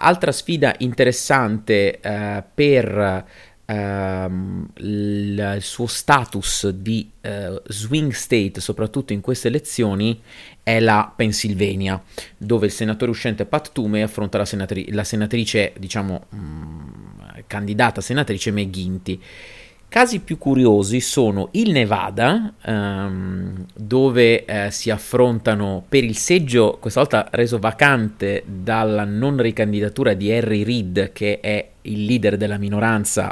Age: 30-49